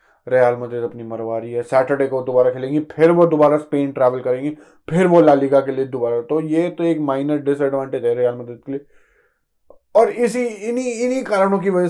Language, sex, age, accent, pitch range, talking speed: Hindi, male, 20-39, native, 135-185 Hz, 190 wpm